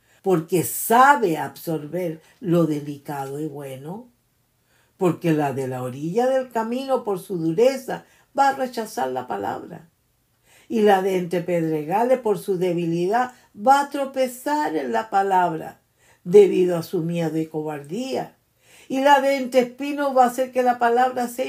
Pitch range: 195-255 Hz